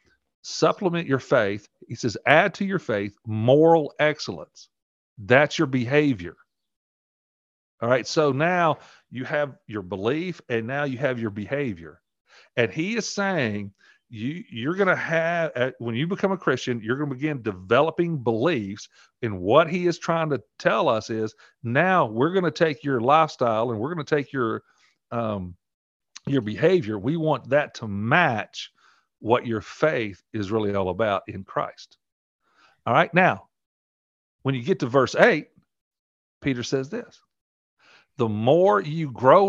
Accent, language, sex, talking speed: American, English, male, 160 wpm